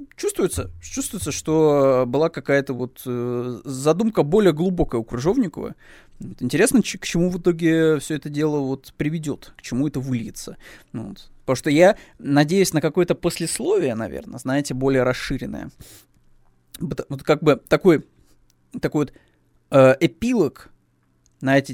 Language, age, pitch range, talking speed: Russian, 20-39, 125-165 Hz, 120 wpm